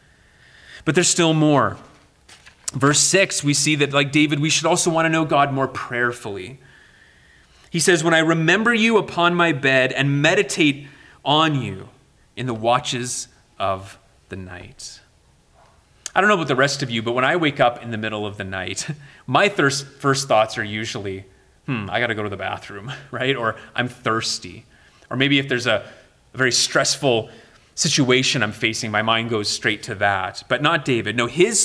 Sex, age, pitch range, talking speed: male, 30-49, 115-170 Hz, 180 wpm